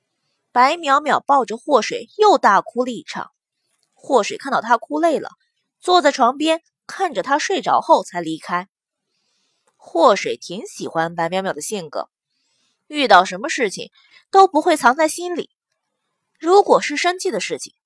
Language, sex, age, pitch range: Chinese, female, 20-39, 230-335 Hz